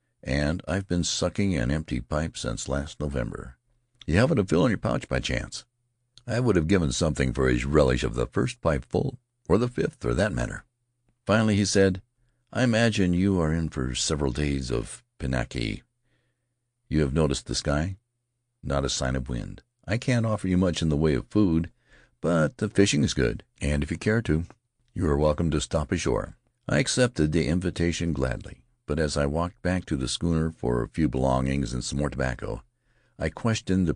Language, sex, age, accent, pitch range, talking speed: English, male, 60-79, American, 70-110 Hz, 195 wpm